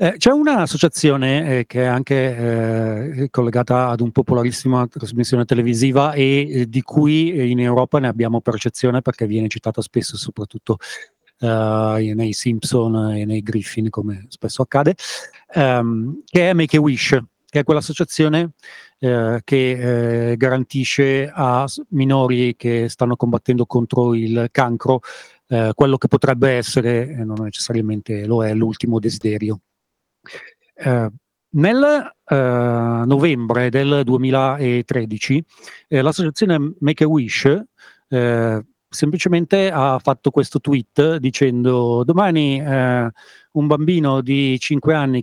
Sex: male